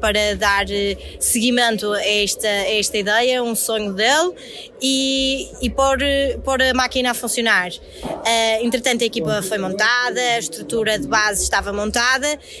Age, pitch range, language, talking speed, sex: 20-39, 225-280 Hz, Portuguese, 150 wpm, female